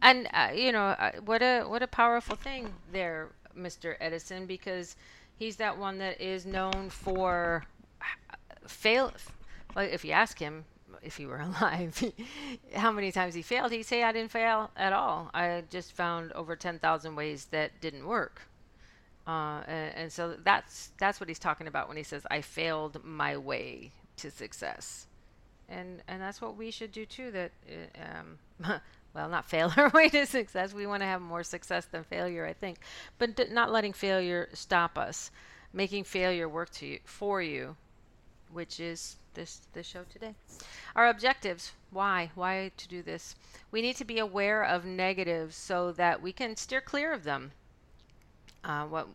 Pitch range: 165-220 Hz